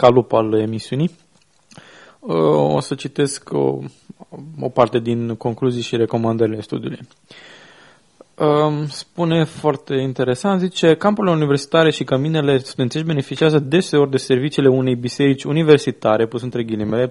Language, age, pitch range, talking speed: Romanian, 20-39, 120-150 Hz, 115 wpm